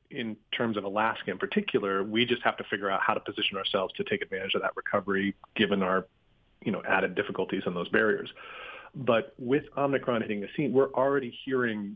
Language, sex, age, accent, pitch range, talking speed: English, male, 30-49, American, 100-120 Hz, 200 wpm